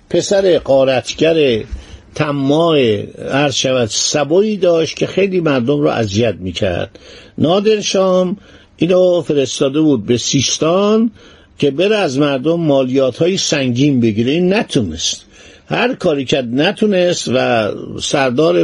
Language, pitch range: Persian, 130-170 Hz